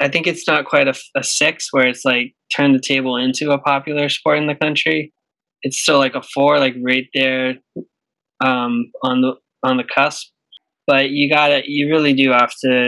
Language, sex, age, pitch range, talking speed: English, male, 20-39, 120-145 Hz, 205 wpm